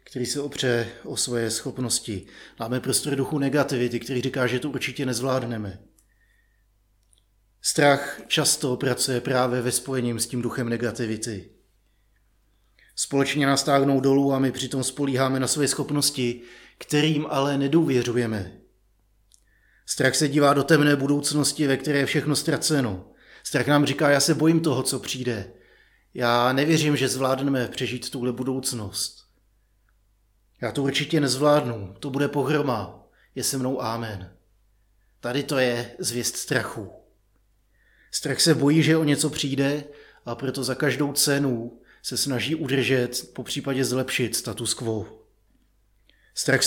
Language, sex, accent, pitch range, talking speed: Czech, male, native, 115-145 Hz, 130 wpm